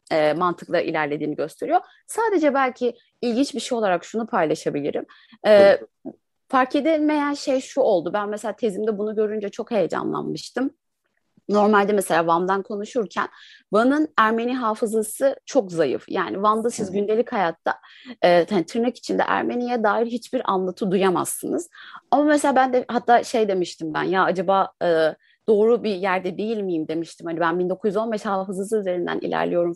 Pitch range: 205-275 Hz